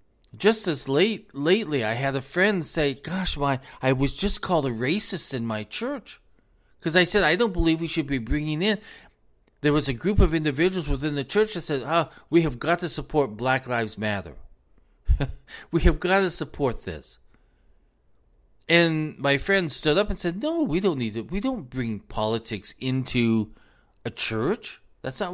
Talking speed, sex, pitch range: 185 wpm, male, 120-180 Hz